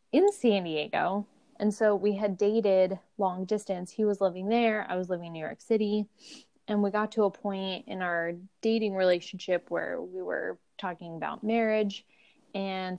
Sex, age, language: female, 10-29, English